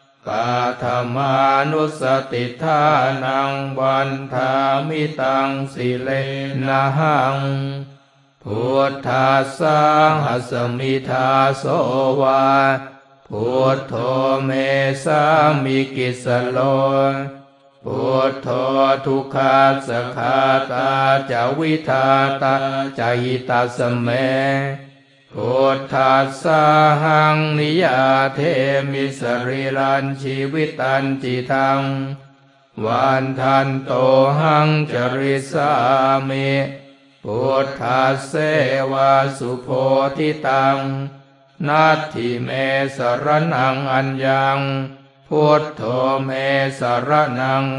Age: 60-79